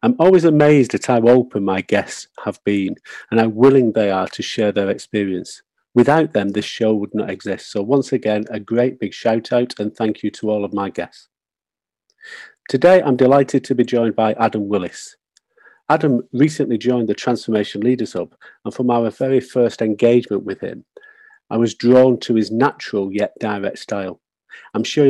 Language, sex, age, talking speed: English, male, 40-59, 185 wpm